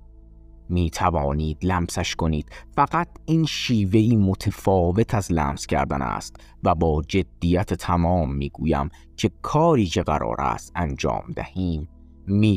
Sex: male